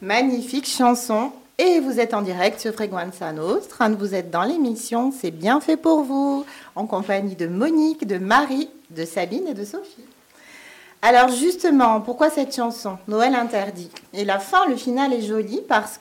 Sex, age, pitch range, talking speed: female, 40-59, 185-245 Hz, 170 wpm